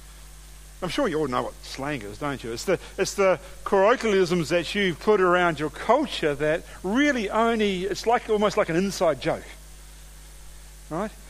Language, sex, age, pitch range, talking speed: English, male, 50-69, 160-215 Hz, 170 wpm